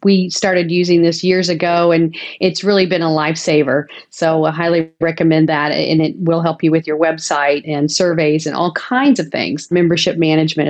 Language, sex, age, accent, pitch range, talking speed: English, female, 40-59, American, 165-185 Hz, 190 wpm